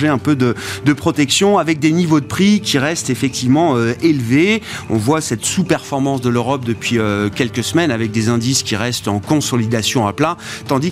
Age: 30-49